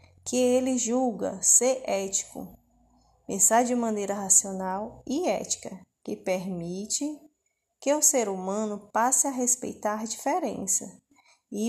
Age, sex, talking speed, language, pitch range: 20-39, female, 120 wpm, Portuguese, 205-275 Hz